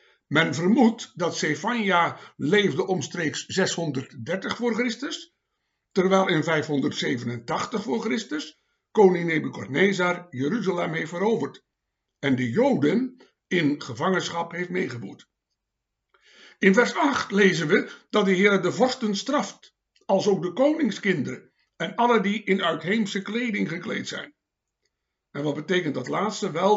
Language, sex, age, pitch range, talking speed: Dutch, male, 60-79, 165-215 Hz, 125 wpm